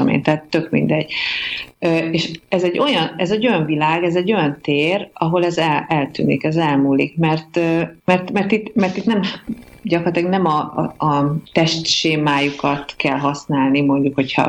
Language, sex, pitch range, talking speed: Hungarian, female, 145-190 Hz, 135 wpm